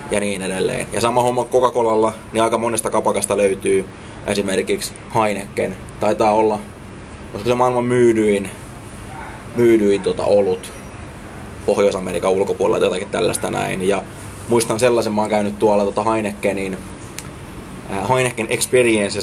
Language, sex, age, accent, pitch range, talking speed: Finnish, male, 20-39, native, 100-115 Hz, 120 wpm